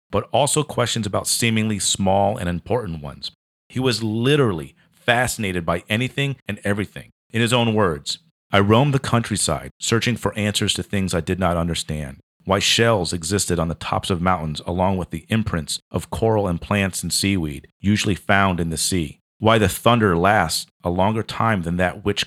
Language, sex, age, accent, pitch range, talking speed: English, male, 40-59, American, 90-110 Hz, 180 wpm